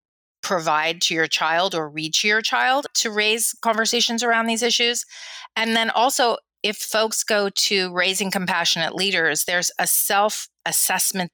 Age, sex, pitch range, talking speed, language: 30-49, female, 160-225 Hz, 150 wpm, English